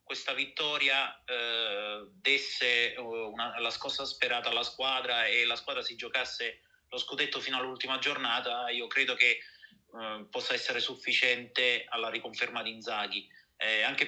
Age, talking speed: 30-49, 145 wpm